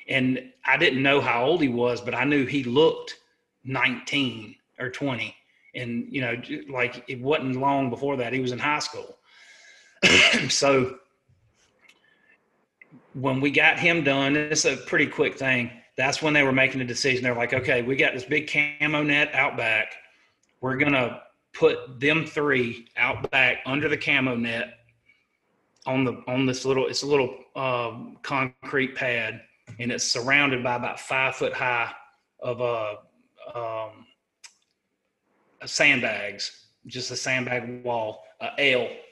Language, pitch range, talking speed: English, 120-145 Hz, 155 wpm